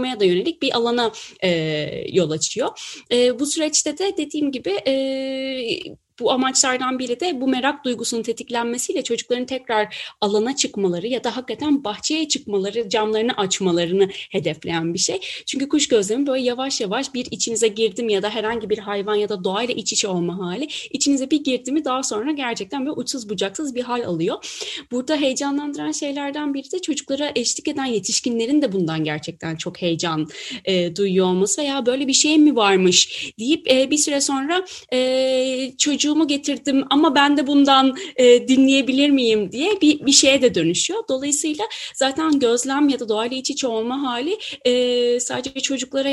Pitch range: 220-280 Hz